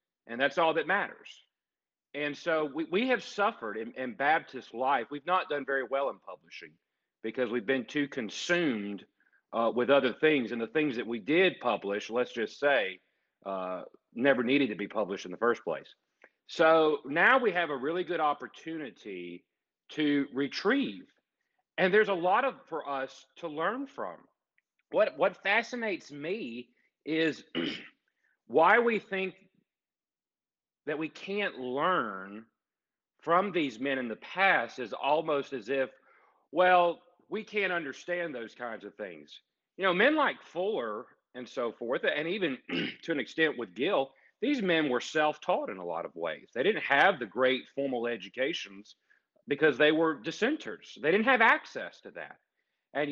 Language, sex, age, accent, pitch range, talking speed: English, male, 40-59, American, 125-180 Hz, 160 wpm